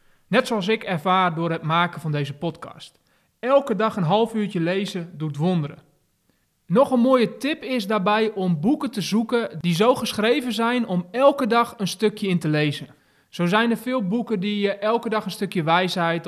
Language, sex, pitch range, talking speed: Dutch, male, 170-225 Hz, 190 wpm